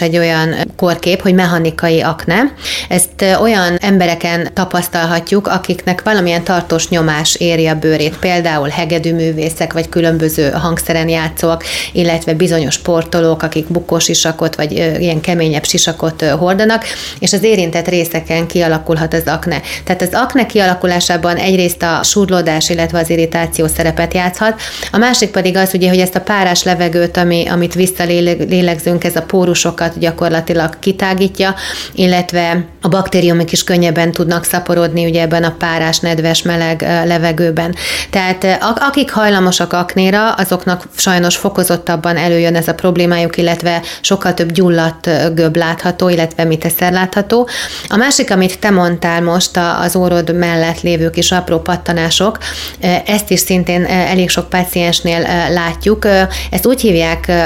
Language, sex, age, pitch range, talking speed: Hungarian, female, 30-49, 165-185 Hz, 135 wpm